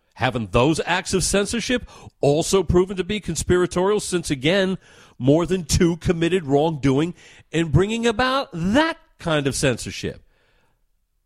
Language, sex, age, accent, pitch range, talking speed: English, male, 50-69, American, 125-195 Hz, 130 wpm